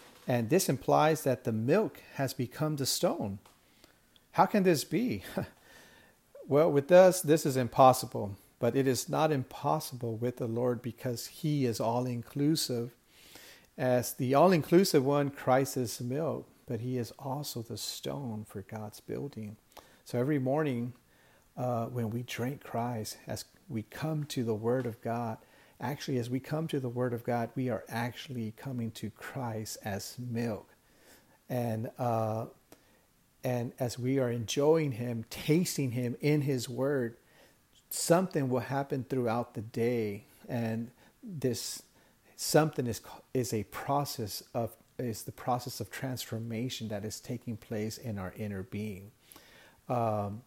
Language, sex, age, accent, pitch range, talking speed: English, male, 50-69, American, 115-140 Hz, 145 wpm